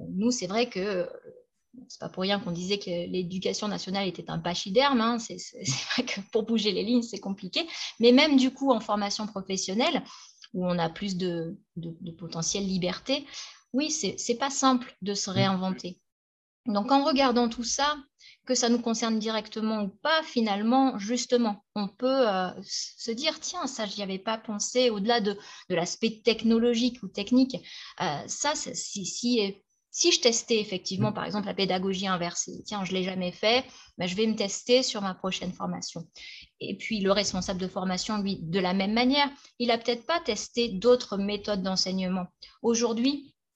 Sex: female